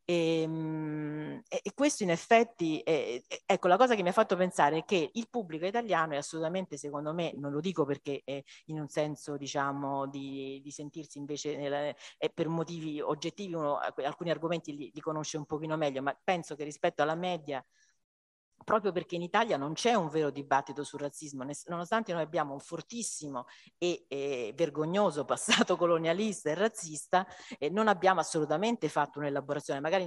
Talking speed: 170 wpm